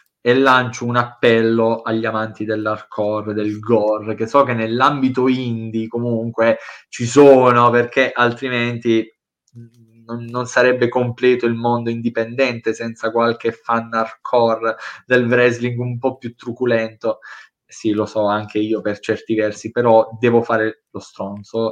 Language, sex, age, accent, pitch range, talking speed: Italian, male, 20-39, native, 110-135 Hz, 135 wpm